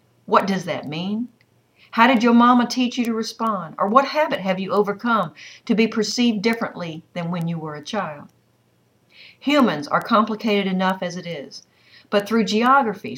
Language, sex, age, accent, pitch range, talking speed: English, female, 50-69, American, 185-240 Hz, 175 wpm